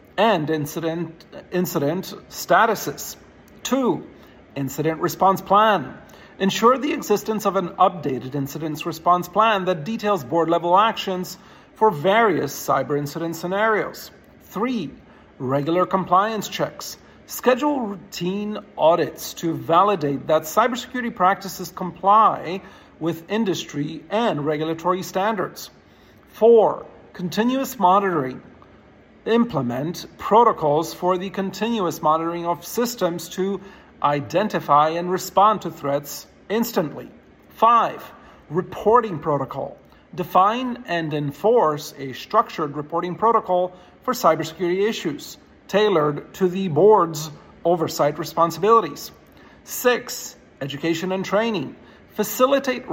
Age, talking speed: 40-59, 100 wpm